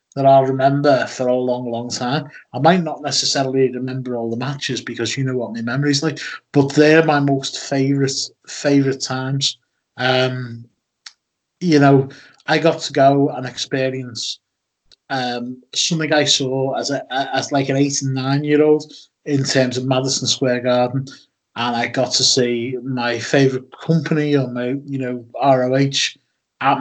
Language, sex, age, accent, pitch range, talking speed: English, male, 30-49, British, 120-140 Hz, 160 wpm